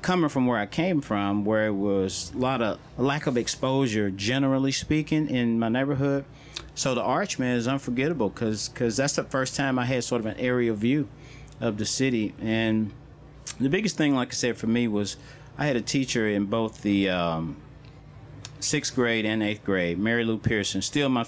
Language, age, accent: English, 40-59, American